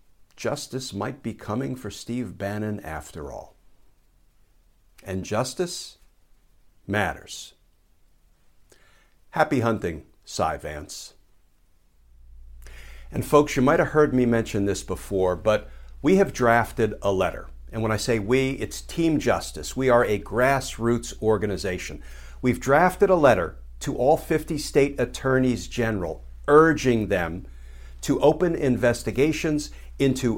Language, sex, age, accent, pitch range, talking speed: English, male, 60-79, American, 95-135 Hz, 120 wpm